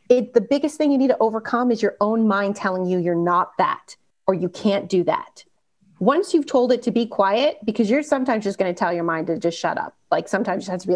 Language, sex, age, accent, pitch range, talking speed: English, female, 30-49, American, 200-275 Hz, 255 wpm